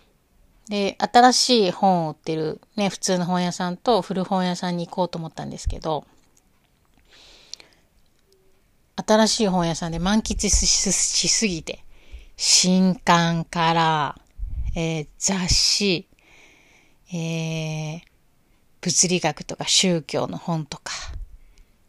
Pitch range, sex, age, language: 155-195 Hz, female, 30-49, Japanese